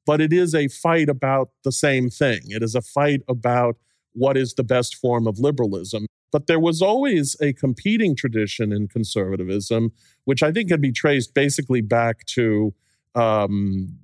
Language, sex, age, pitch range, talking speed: English, male, 40-59, 120-145 Hz, 170 wpm